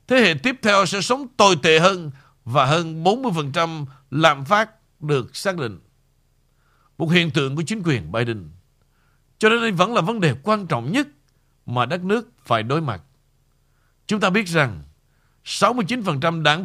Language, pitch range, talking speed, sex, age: Vietnamese, 140-195 Hz, 160 wpm, male, 60-79